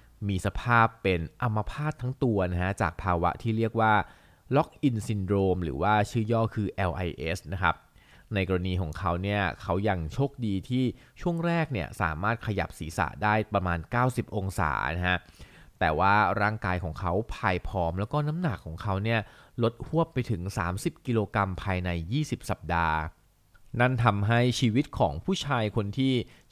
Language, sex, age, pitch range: Thai, male, 20-39, 90-115 Hz